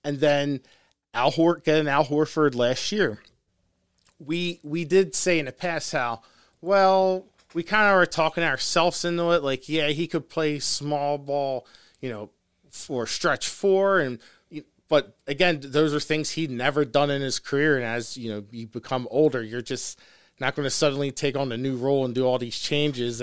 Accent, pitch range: American, 135-165 Hz